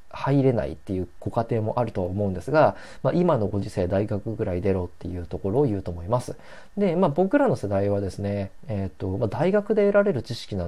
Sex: male